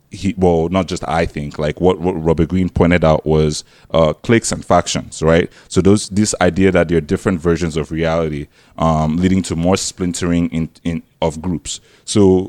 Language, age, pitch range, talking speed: English, 20-39, 80-95 Hz, 190 wpm